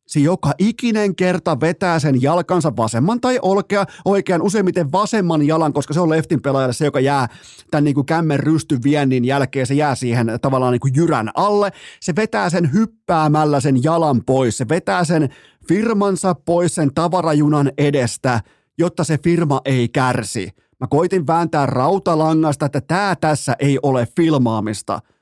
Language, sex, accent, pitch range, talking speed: Finnish, male, native, 130-170 Hz, 155 wpm